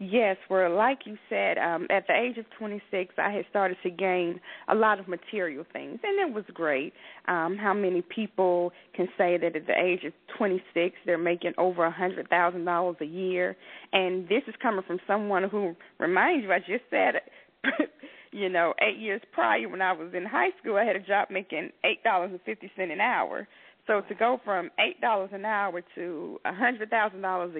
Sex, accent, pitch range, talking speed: female, American, 185-215 Hz, 180 wpm